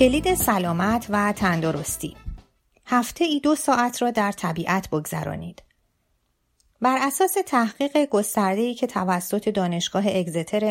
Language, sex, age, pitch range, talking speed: Persian, female, 30-49, 175-230 Hz, 120 wpm